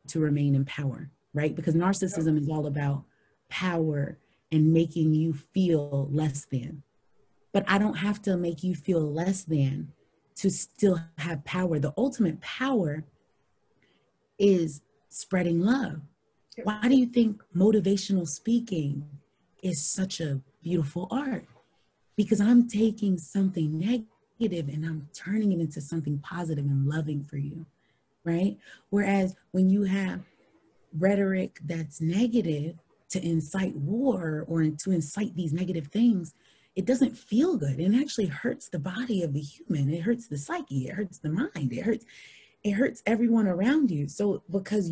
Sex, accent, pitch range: female, American, 150-210 Hz